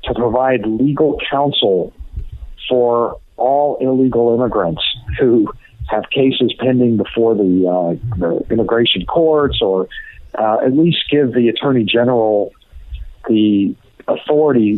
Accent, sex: American, male